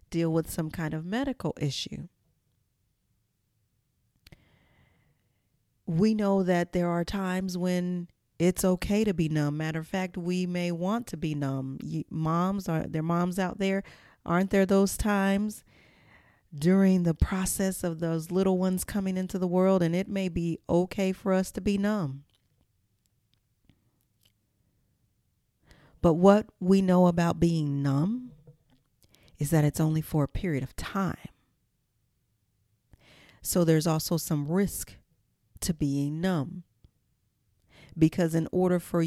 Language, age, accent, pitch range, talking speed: English, 40-59, American, 140-180 Hz, 135 wpm